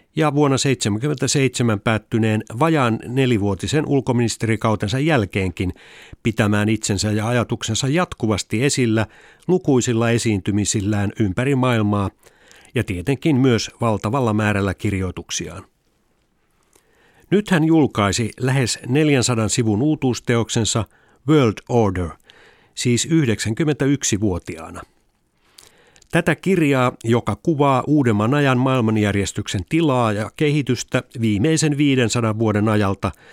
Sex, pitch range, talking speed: male, 105-135 Hz, 90 wpm